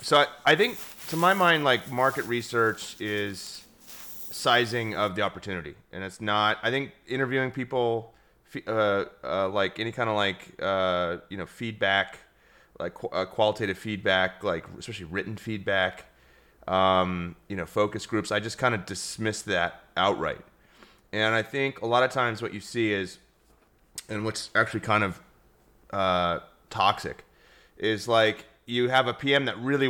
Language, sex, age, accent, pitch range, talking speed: English, male, 30-49, American, 100-120 Hz, 160 wpm